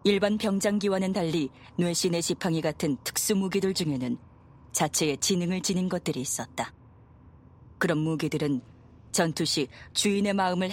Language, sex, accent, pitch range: Korean, female, native, 145-190 Hz